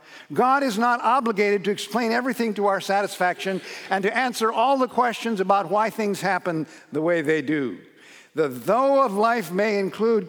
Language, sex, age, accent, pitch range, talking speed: English, male, 50-69, American, 150-205 Hz, 175 wpm